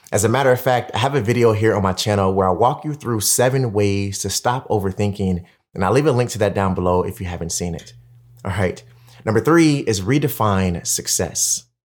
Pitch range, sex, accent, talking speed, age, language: 95-120 Hz, male, American, 220 wpm, 30-49, English